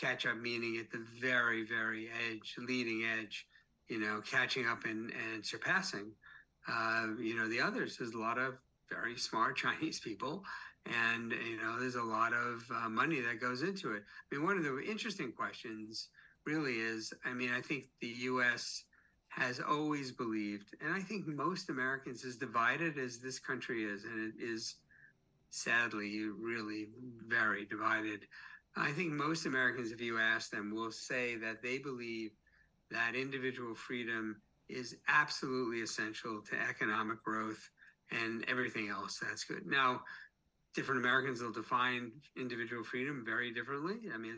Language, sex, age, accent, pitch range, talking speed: English, male, 50-69, American, 115-130 Hz, 160 wpm